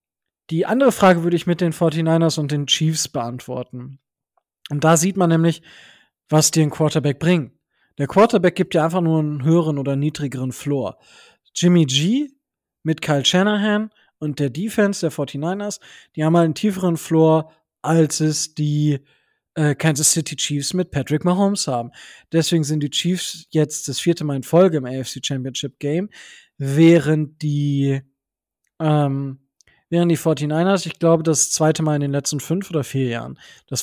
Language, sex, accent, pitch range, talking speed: German, male, German, 140-170 Hz, 165 wpm